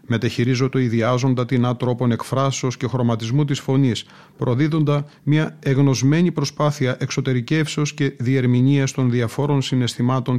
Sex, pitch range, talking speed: male, 120-140 Hz, 115 wpm